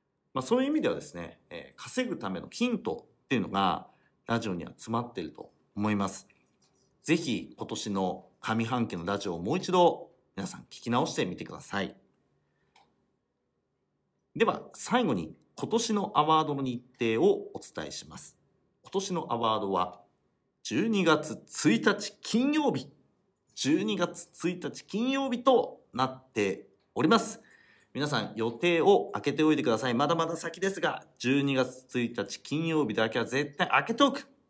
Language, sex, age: Japanese, male, 40-59